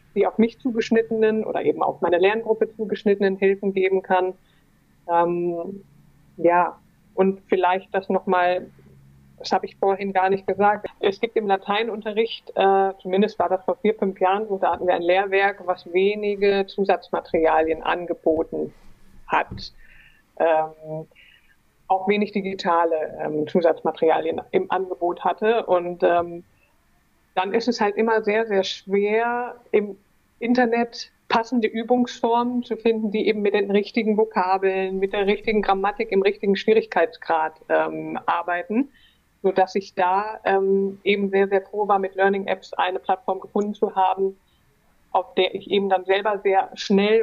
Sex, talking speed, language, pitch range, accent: female, 145 wpm, German, 180-210 Hz, German